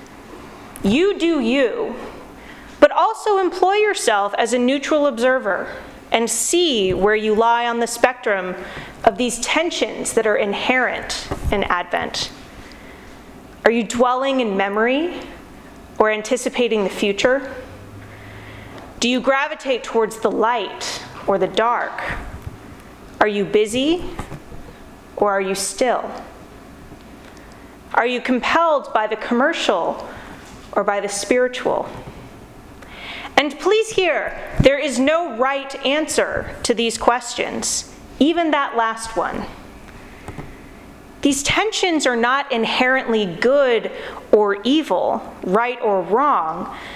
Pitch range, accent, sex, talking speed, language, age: 215-295 Hz, American, female, 110 wpm, English, 30-49